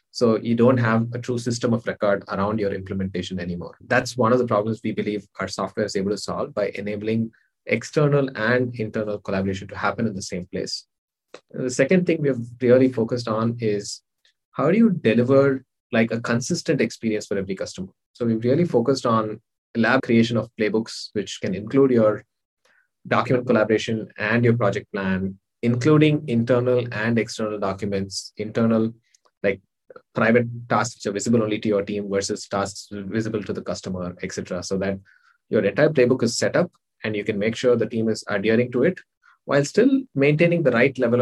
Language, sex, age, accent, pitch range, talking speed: English, male, 20-39, Indian, 105-125 Hz, 185 wpm